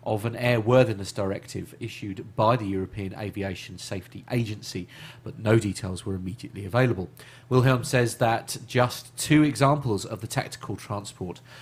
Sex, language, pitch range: male, English, 95-125 Hz